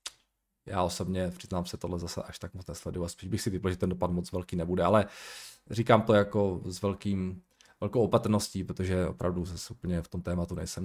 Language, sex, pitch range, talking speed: Czech, male, 90-115 Hz, 195 wpm